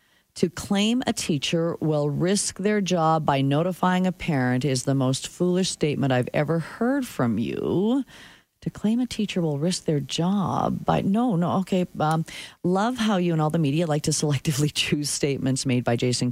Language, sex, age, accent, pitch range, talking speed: English, female, 40-59, American, 150-215 Hz, 185 wpm